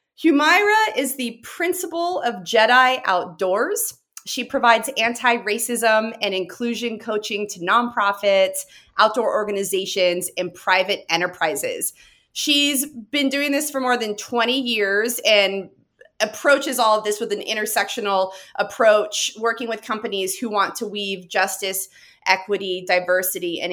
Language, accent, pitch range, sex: English, American, 195-275 Hz, female